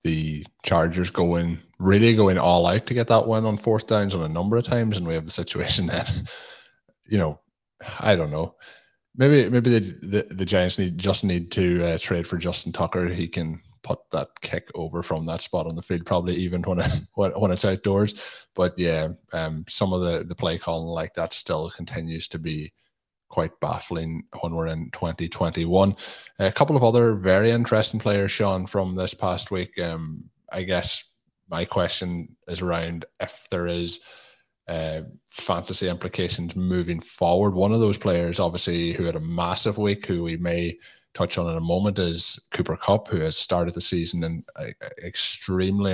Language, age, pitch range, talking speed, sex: English, 20-39, 85-100 Hz, 180 wpm, male